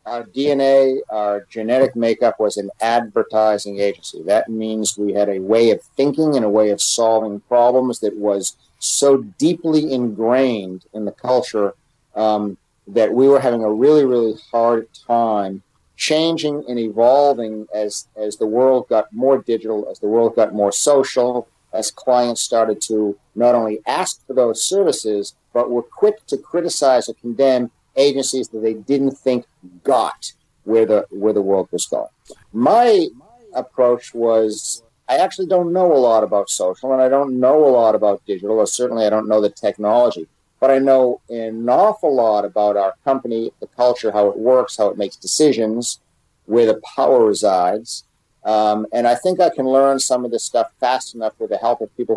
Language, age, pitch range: English, 50-69, 105-130 Hz